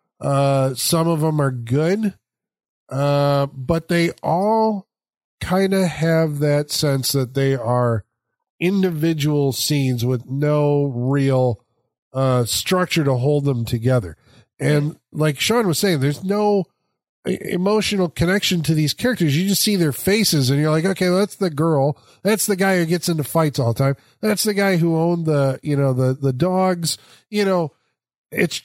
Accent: American